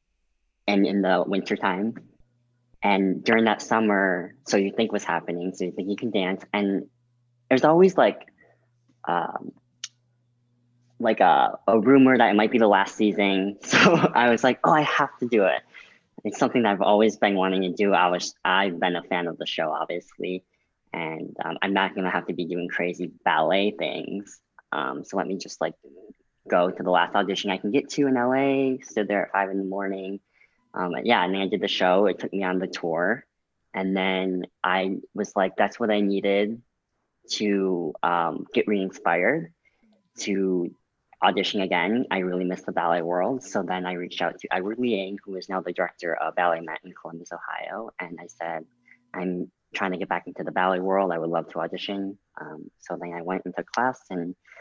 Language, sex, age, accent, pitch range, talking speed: English, female, 10-29, American, 90-110 Hz, 200 wpm